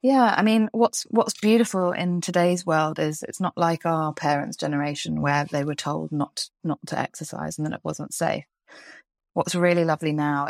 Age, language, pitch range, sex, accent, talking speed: 20-39, English, 155-185 Hz, female, British, 190 wpm